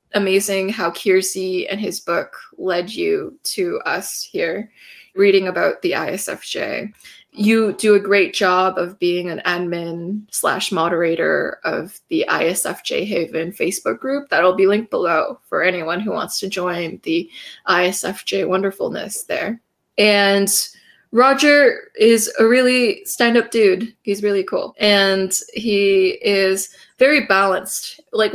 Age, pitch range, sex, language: 20-39, 180-220 Hz, female, English